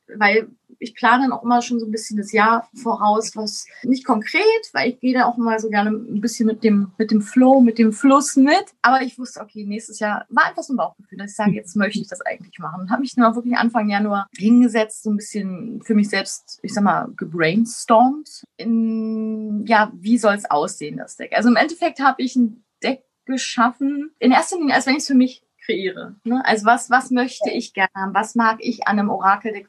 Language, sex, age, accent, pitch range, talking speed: German, female, 20-39, German, 205-245 Hz, 220 wpm